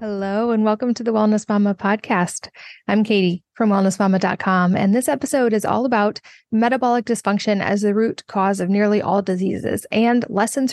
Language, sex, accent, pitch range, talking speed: English, female, American, 190-220 Hz, 170 wpm